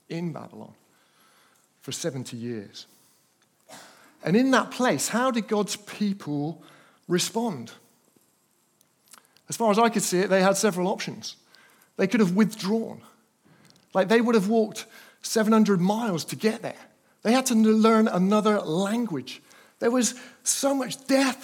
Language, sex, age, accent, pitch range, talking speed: English, male, 50-69, British, 170-225 Hz, 140 wpm